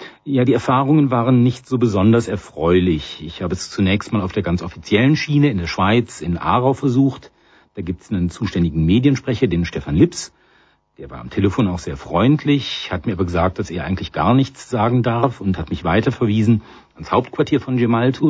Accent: German